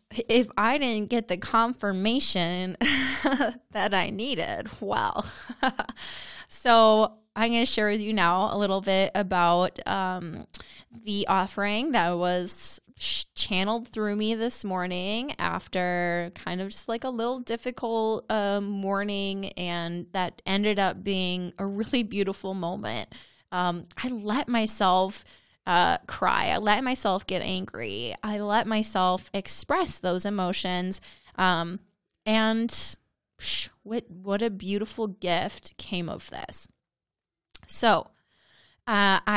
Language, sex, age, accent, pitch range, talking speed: English, female, 20-39, American, 180-225 Hz, 125 wpm